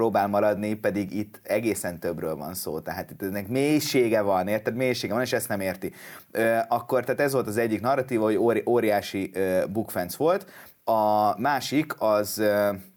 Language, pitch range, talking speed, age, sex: Hungarian, 105-125 Hz, 155 wpm, 30-49, male